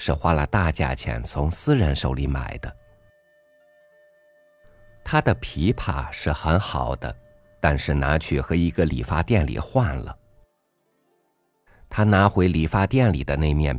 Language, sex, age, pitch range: Chinese, male, 50-69, 75-115 Hz